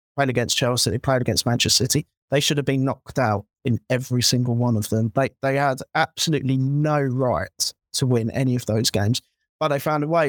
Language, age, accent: English, 20-39, British